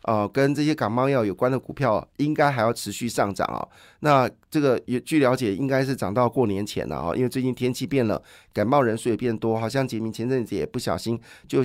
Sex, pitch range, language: male, 105-130 Hz, Chinese